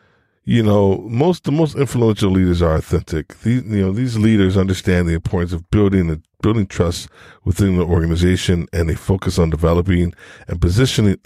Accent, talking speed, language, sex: American, 170 wpm, English, male